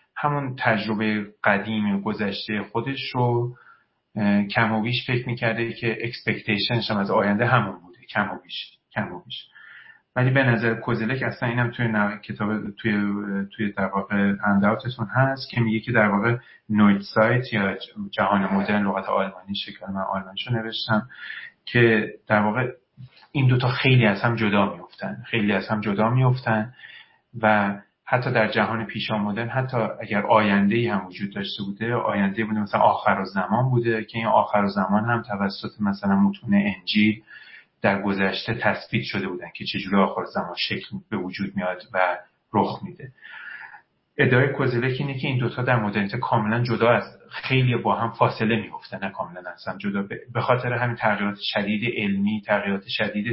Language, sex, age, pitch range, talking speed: Persian, male, 30-49, 100-120 Hz, 155 wpm